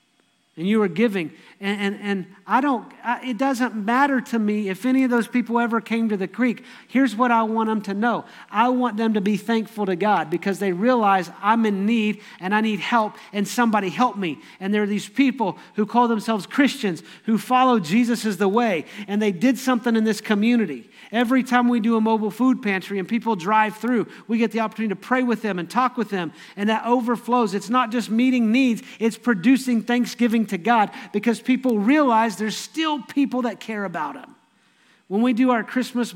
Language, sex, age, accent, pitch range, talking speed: English, male, 40-59, American, 205-245 Hz, 210 wpm